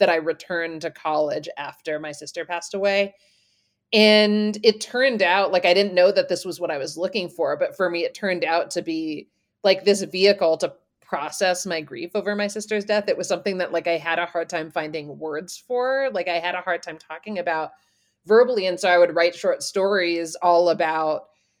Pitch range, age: 165-200 Hz, 30-49